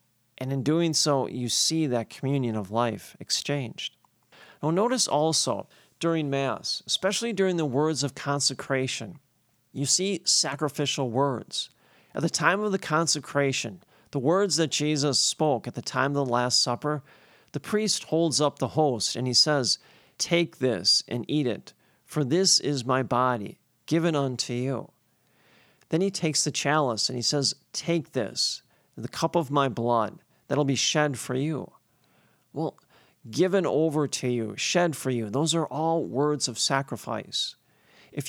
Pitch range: 125-160 Hz